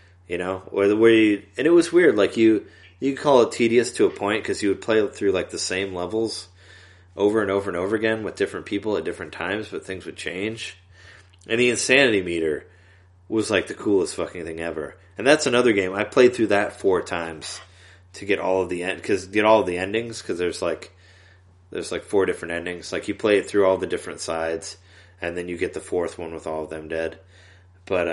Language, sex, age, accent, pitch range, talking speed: English, male, 30-49, American, 90-105 Hz, 230 wpm